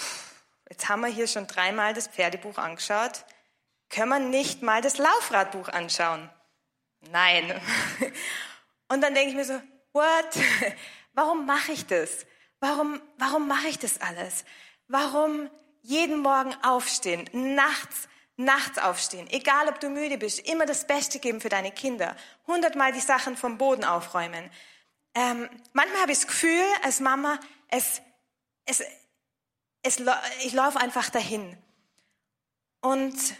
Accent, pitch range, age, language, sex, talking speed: German, 220-280 Hz, 20-39, German, female, 135 wpm